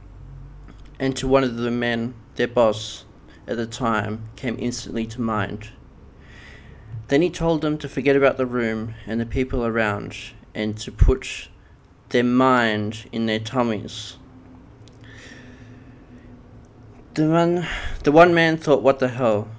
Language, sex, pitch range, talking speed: English, male, 110-130 Hz, 140 wpm